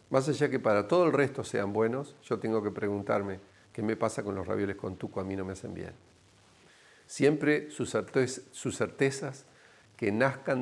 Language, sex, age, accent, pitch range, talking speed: English, male, 50-69, Argentinian, 100-120 Hz, 190 wpm